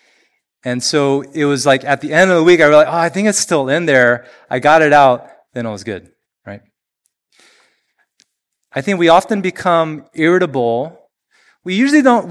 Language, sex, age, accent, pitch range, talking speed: English, male, 30-49, American, 125-180 Hz, 190 wpm